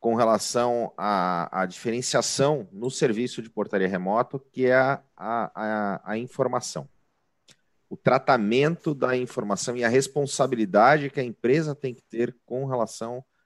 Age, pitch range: 40-59, 110-145 Hz